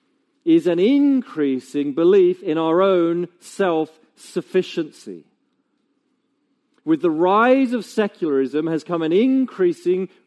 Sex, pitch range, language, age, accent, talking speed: male, 195-255 Hz, English, 40-59, British, 100 wpm